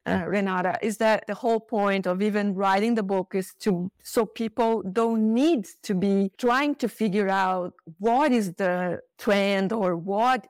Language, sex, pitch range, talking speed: English, female, 185-215 Hz, 170 wpm